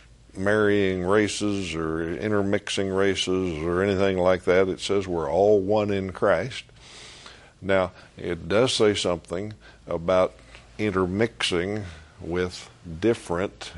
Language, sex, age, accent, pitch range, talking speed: English, male, 60-79, American, 85-105 Hz, 110 wpm